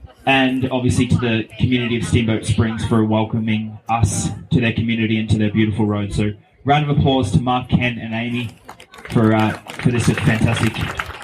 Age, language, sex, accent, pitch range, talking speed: 20-39, English, male, Australian, 110-135 Hz, 175 wpm